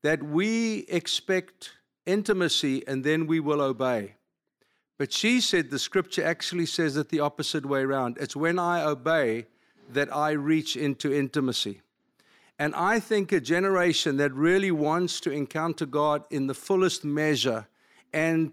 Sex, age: male, 50-69